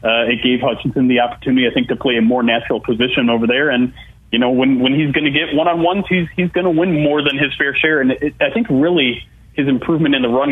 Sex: male